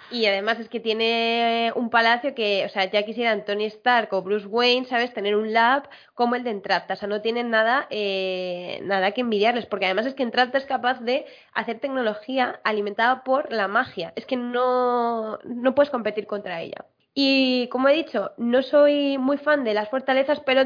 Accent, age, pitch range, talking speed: Spanish, 20-39, 210-255 Hz, 200 wpm